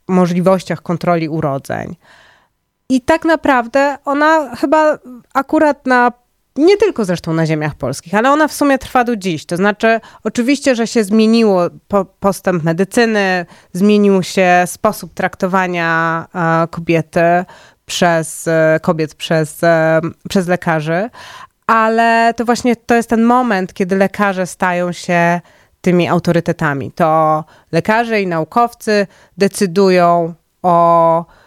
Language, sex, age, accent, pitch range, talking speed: Polish, female, 20-39, native, 165-235 Hz, 115 wpm